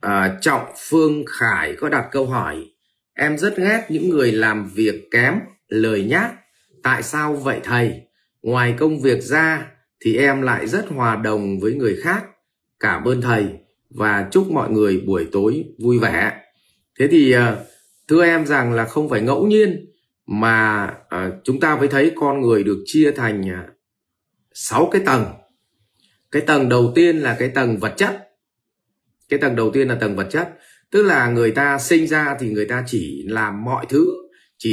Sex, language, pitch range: male, Vietnamese, 110-150 Hz